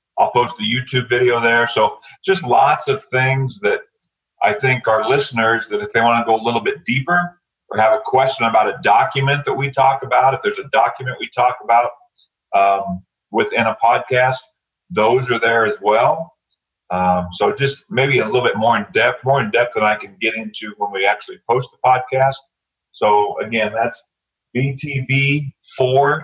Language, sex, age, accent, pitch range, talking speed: English, male, 40-59, American, 110-140 Hz, 190 wpm